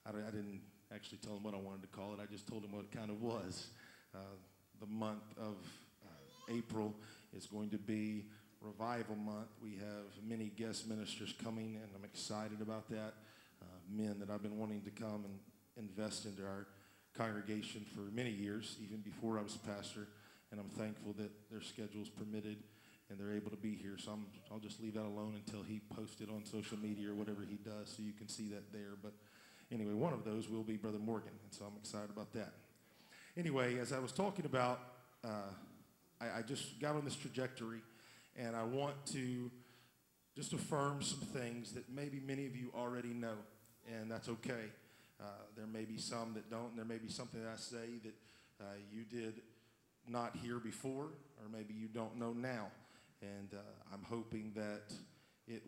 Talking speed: 200 wpm